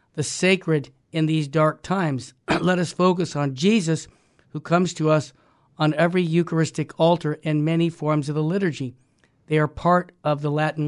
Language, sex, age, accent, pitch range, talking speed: English, male, 50-69, American, 150-175 Hz, 170 wpm